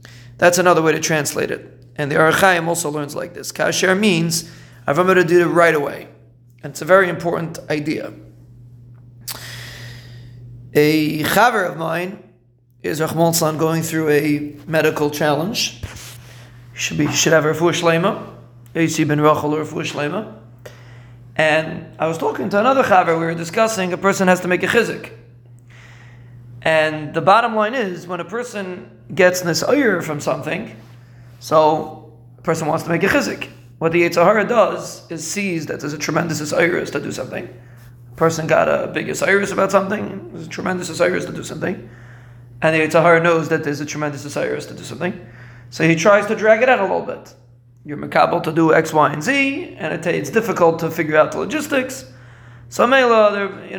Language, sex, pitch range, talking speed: English, male, 120-175 Hz, 165 wpm